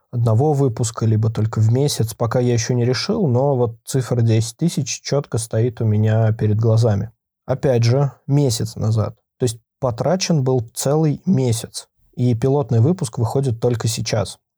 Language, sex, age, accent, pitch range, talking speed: Russian, male, 20-39, native, 115-140 Hz, 155 wpm